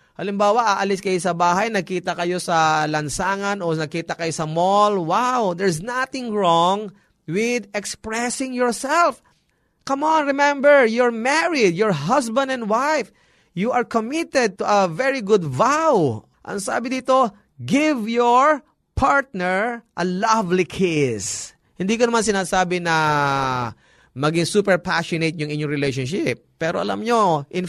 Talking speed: 135 wpm